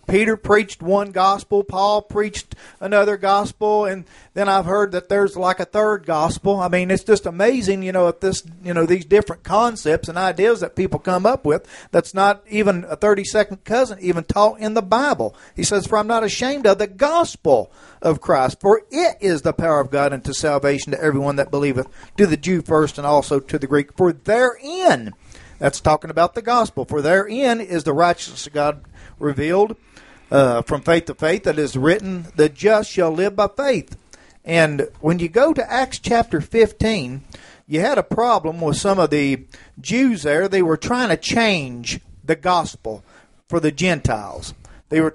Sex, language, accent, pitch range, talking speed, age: male, English, American, 155-210 Hz, 185 wpm, 50-69